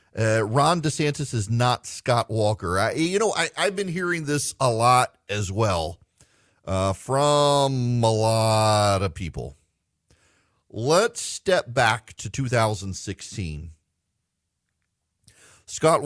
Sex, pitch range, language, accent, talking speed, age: male, 100-130 Hz, English, American, 110 wpm, 40-59